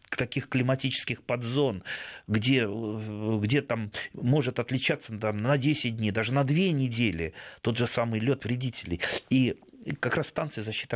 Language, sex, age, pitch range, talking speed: Russian, male, 30-49, 105-130 Hz, 135 wpm